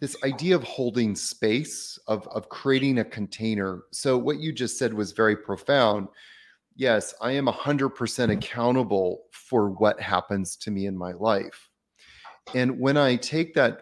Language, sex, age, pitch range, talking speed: English, male, 30-49, 105-130 Hz, 155 wpm